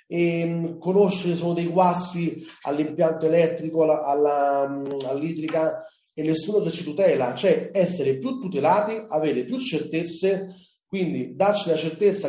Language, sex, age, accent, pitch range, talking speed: Italian, male, 30-49, native, 135-175 Hz, 115 wpm